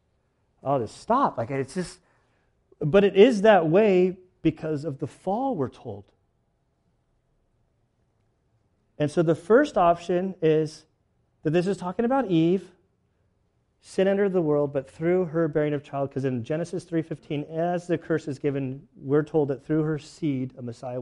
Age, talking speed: 40-59, 160 wpm